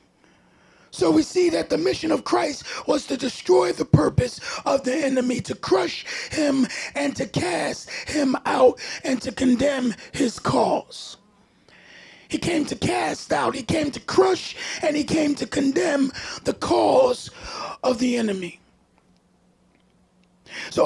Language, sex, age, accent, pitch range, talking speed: English, male, 40-59, American, 260-335 Hz, 140 wpm